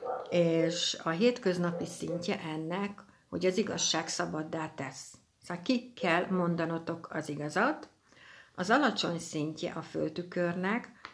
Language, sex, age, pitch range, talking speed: Hungarian, female, 60-79, 155-185 Hz, 115 wpm